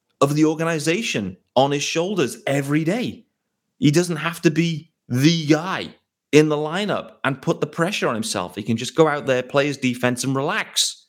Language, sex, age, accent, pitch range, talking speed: English, male, 30-49, British, 105-150 Hz, 190 wpm